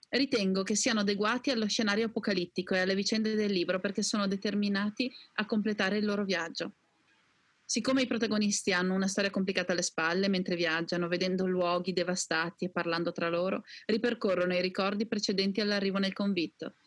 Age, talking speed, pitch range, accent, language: 30-49, 160 wpm, 180-220 Hz, native, Italian